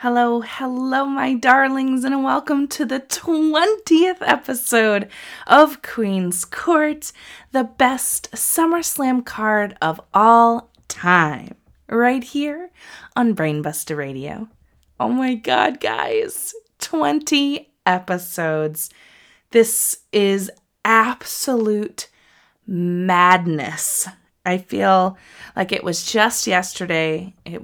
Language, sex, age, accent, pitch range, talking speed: English, female, 20-39, American, 165-240 Hz, 95 wpm